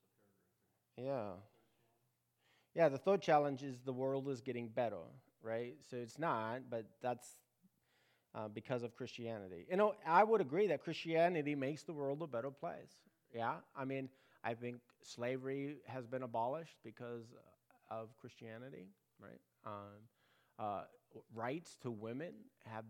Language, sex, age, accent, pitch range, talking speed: English, male, 30-49, American, 115-145 Hz, 140 wpm